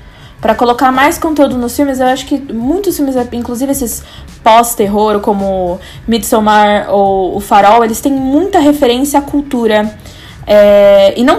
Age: 20-39